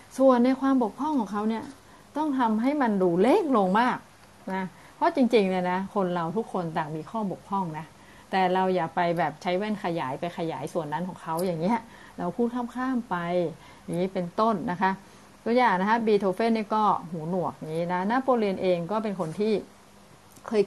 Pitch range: 175-230 Hz